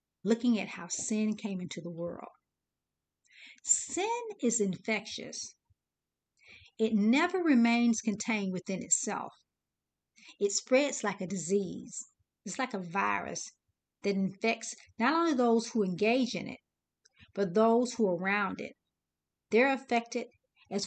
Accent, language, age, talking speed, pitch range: American, English, 50-69, 125 wpm, 200-245 Hz